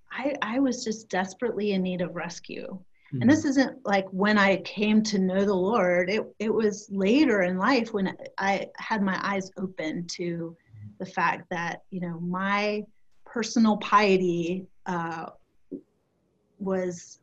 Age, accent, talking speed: 30-49, American, 150 wpm